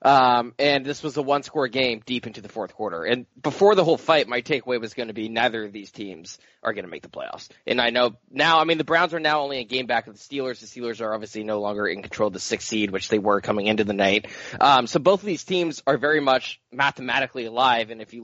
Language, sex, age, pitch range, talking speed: English, male, 20-39, 120-165 Hz, 275 wpm